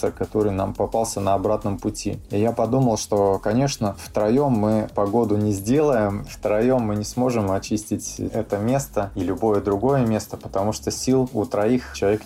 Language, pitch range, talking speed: Russian, 95-115 Hz, 160 wpm